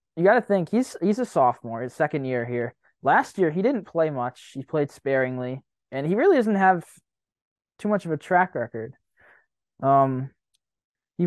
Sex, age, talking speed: male, 20-39, 175 wpm